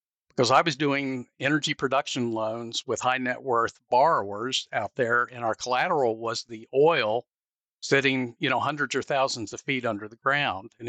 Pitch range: 120-150 Hz